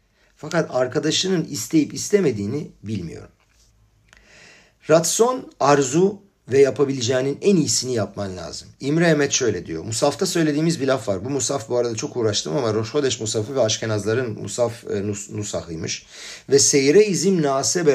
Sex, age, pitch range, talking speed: male, 50-69, 110-160 Hz, 135 wpm